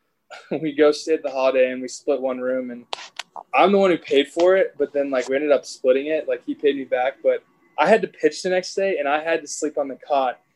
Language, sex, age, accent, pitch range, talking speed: English, male, 20-39, American, 125-155 Hz, 275 wpm